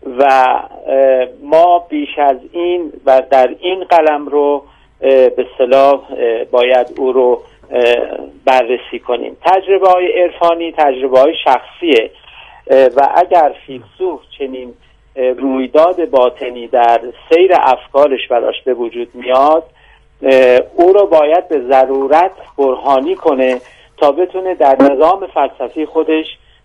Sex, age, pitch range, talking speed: male, 50-69, 125-170 Hz, 110 wpm